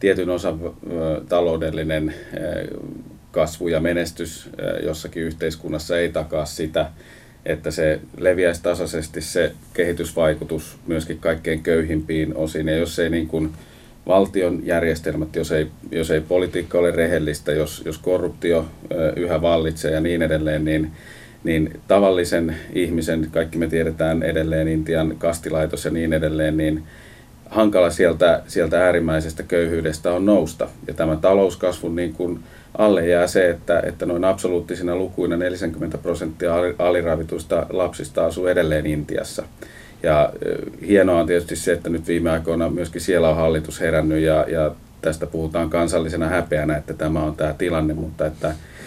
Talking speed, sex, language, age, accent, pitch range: 130 wpm, male, Finnish, 30-49, native, 80-85 Hz